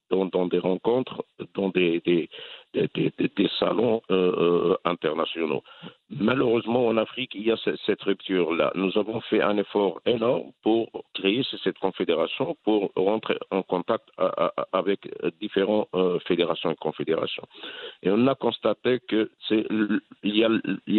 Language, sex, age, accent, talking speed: French, male, 60-79, French, 125 wpm